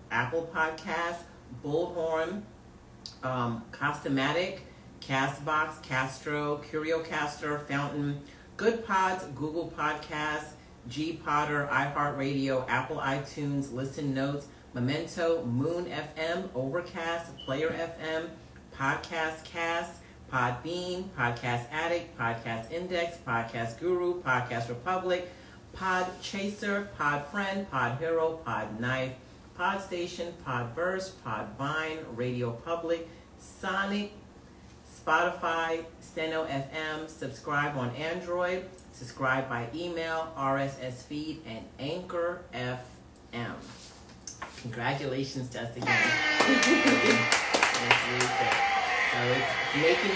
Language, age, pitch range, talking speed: English, 50-69, 130-170 Hz, 85 wpm